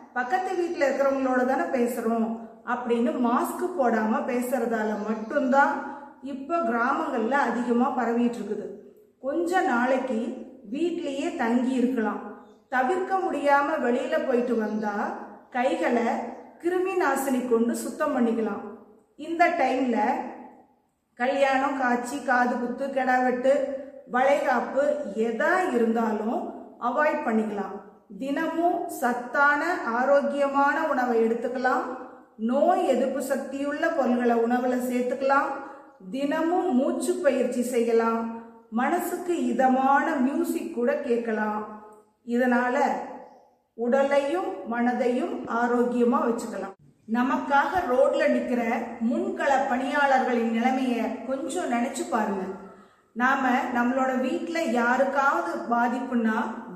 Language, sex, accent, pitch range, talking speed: Tamil, female, native, 235-280 Hz, 85 wpm